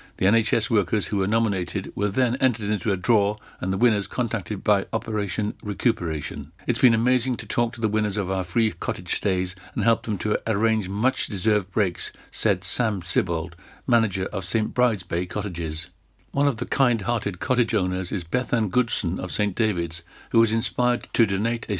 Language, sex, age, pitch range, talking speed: English, male, 60-79, 100-115 Hz, 180 wpm